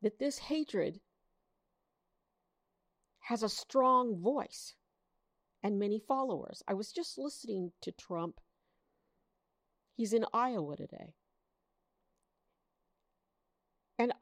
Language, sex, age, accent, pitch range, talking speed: English, female, 50-69, American, 165-255 Hz, 90 wpm